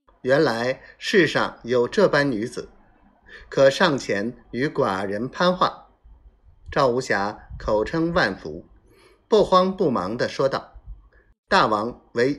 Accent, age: native, 50-69